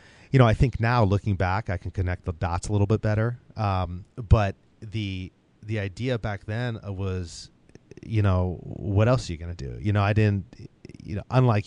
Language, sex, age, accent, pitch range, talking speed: English, male, 30-49, American, 90-110 Hz, 205 wpm